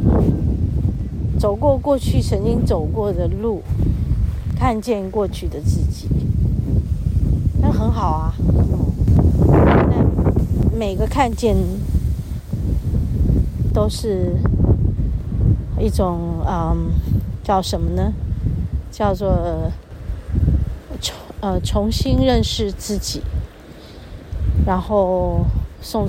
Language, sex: Chinese, female